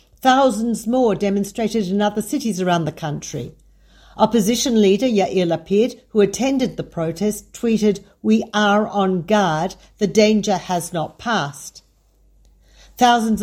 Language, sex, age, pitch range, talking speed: Hebrew, female, 50-69, 185-230 Hz, 125 wpm